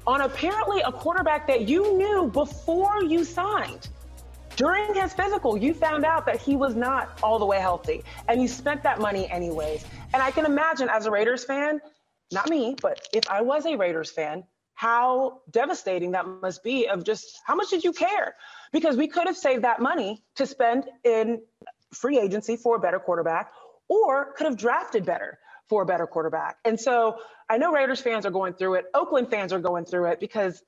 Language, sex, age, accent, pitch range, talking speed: English, female, 30-49, American, 195-285 Hz, 200 wpm